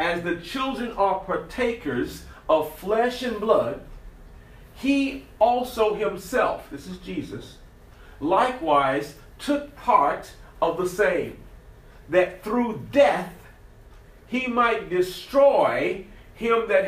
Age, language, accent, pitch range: 40-59, English, American, 150-235 Hz